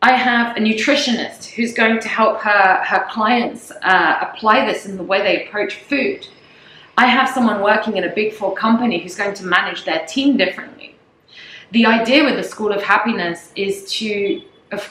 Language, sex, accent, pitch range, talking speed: English, female, British, 195-235 Hz, 185 wpm